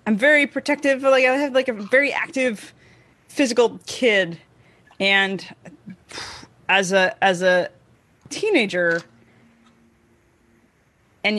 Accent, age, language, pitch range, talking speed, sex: American, 20-39, English, 185-255 Hz, 100 wpm, female